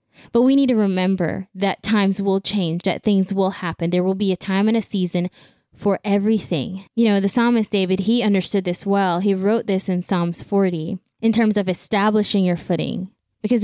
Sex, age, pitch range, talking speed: female, 10-29, 180-215 Hz, 200 wpm